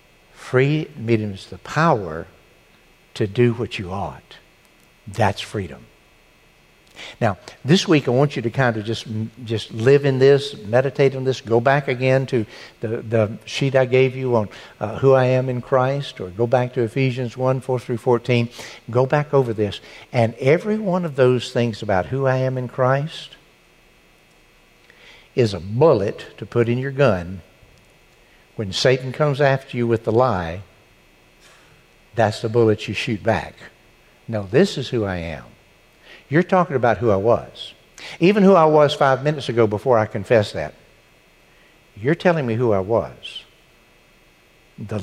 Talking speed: 165 wpm